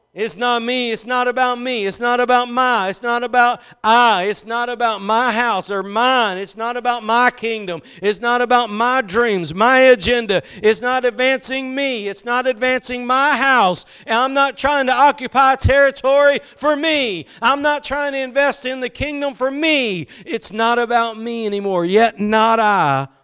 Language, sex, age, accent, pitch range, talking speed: English, male, 50-69, American, 200-250 Hz, 180 wpm